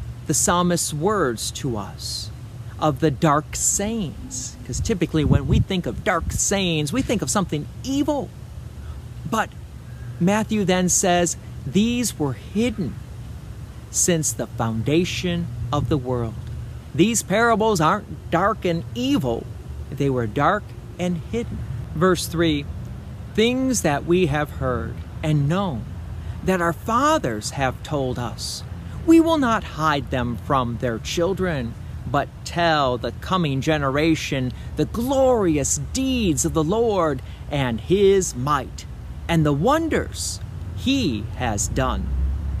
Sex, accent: male, American